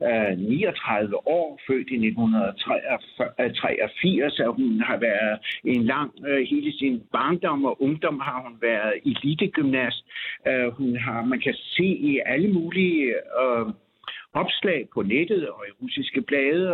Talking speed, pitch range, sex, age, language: 125 wpm, 135-225 Hz, male, 60-79, Danish